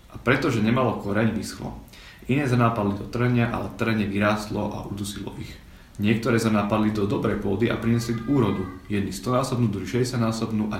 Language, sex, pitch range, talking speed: Slovak, male, 100-110 Hz, 150 wpm